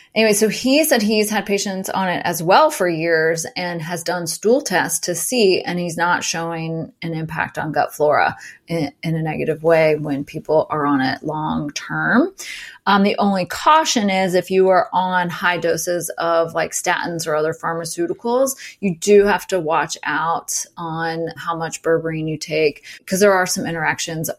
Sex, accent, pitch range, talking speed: female, American, 160-205 Hz, 185 wpm